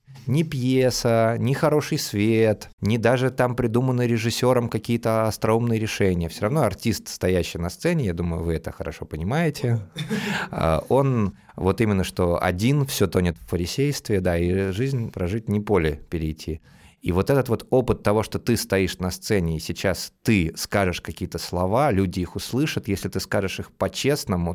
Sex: male